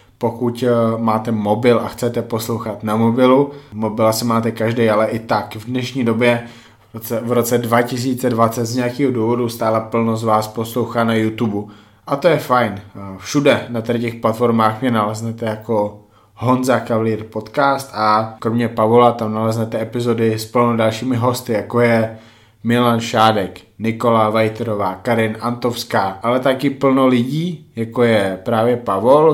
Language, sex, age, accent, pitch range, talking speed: Czech, male, 20-39, native, 110-125 Hz, 145 wpm